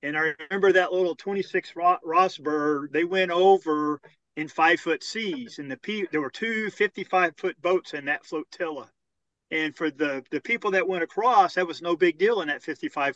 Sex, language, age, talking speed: male, English, 40-59, 180 wpm